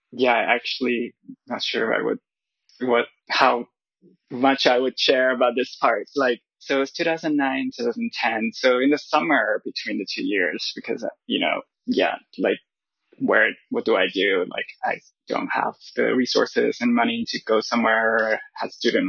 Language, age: English, 20-39